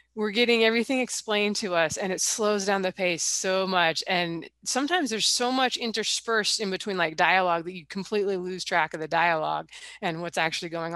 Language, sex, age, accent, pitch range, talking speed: English, female, 20-39, American, 165-220 Hz, 195 wpm